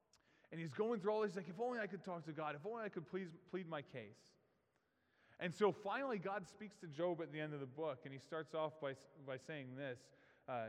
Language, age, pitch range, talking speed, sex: English, 20-39, 135-205 Hz, 240 wpm, male